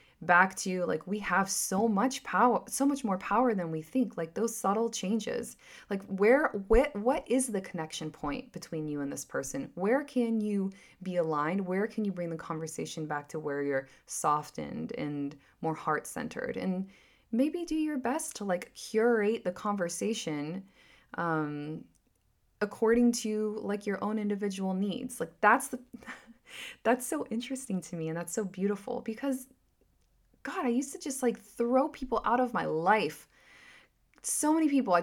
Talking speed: 170 wpm